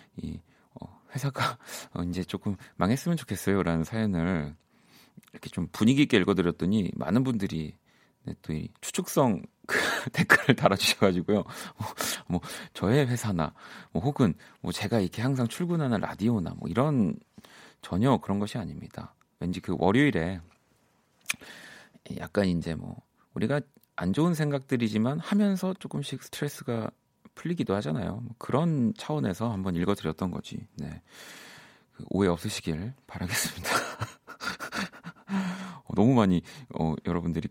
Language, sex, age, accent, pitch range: Korean, male, 40-59, native, 90-130 Hz